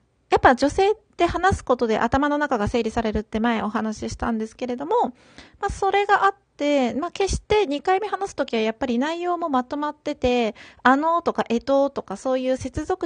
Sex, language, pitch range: female, Japanese, 210-290 Hz